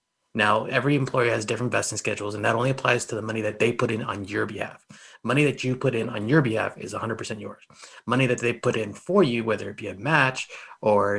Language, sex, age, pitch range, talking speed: English, male, 30-49, 110-135 Hz, 240 wpm